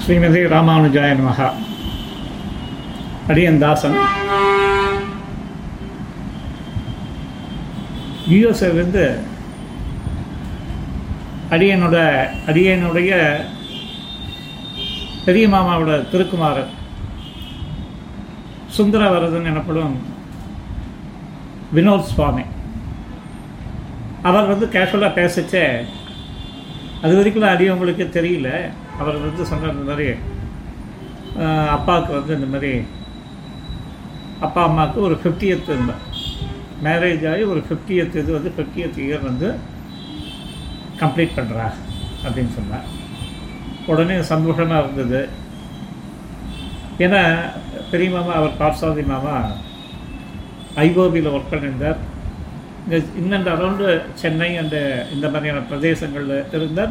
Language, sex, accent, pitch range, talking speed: Tamil, male, native, 140-180 Hz, 75 wpm